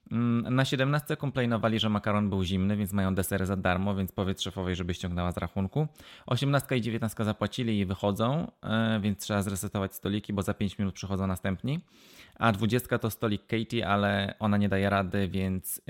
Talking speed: 175 wpm